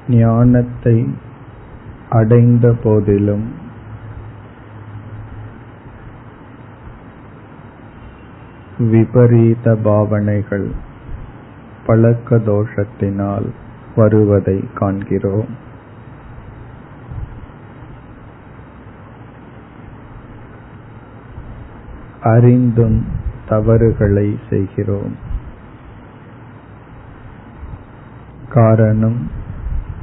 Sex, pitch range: male, 105-120 Hz